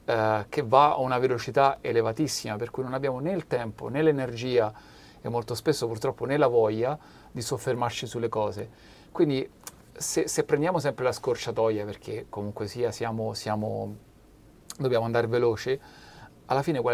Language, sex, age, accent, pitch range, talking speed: Italian, male, 40-59, native, 110-135 Hz, 160 wpm